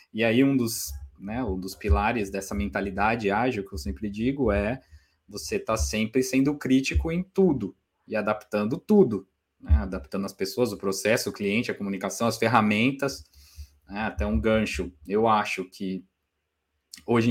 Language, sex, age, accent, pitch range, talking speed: Portuguese, male, 20-39, Brazilian, 95-125 Hz, 160 wpm